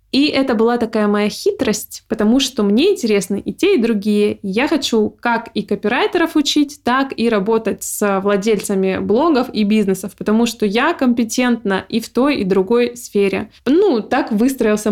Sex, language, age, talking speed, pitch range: female, Russian, 20-39, 165 wpm, 205-250 Hz